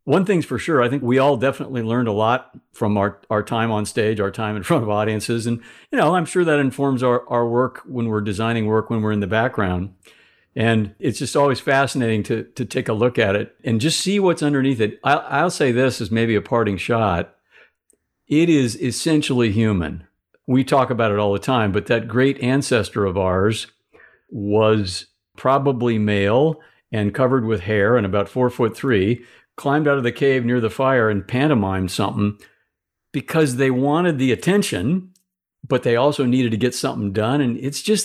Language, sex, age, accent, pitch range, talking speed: English, male, 60-79, American, 110-145 Hz, 200 wpm